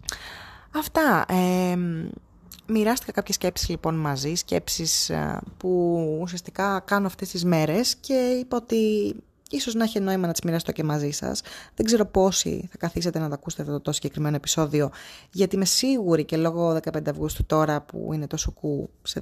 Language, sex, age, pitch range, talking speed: Greek, female, 20-39, 155-200 Hz, 170 wpm